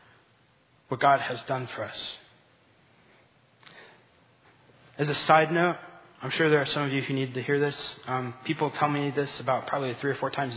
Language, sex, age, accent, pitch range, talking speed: English, male, 20-39, American, 130-155 Hz, 185 wpm